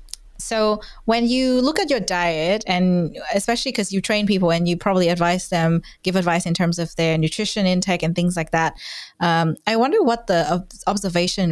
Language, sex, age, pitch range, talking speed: English, female, 20-39, 170-205 Hz, 190 wpm